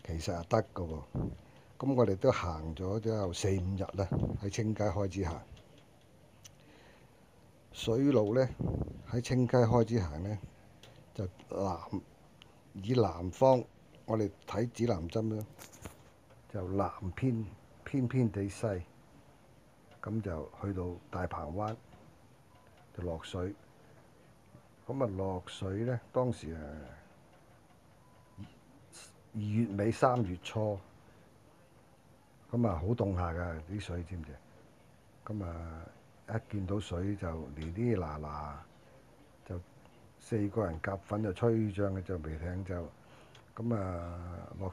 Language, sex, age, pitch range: Japanese, male, 50-69, 90-115 Hz